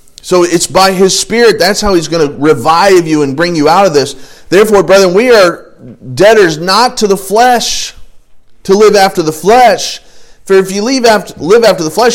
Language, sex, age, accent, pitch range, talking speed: English, male, 40-59, American, 140-190 Hz, 195 wpm